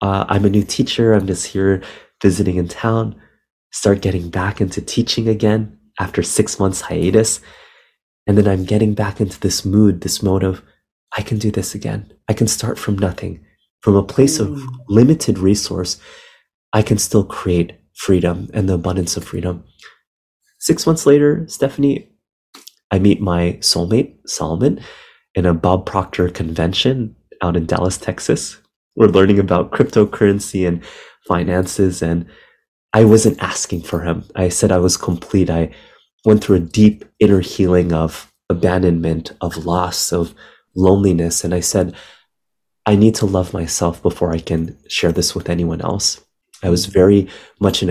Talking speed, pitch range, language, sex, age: 160 wpm, 90-105 Hz, French, male, 30-49